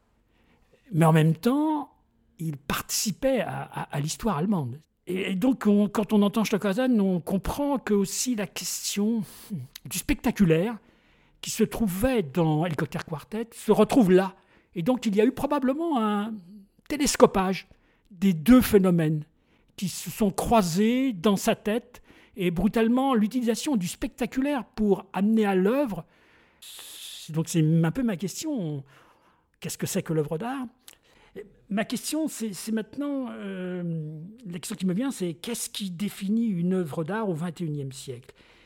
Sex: male